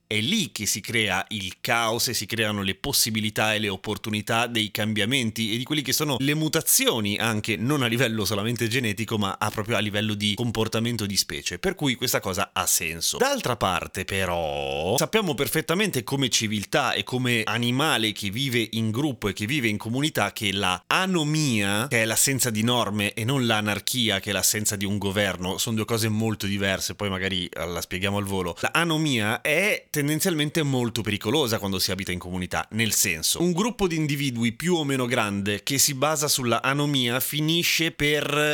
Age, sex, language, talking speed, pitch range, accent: 30-49, male, Italian, 185 wpm, 105-140 Hz, native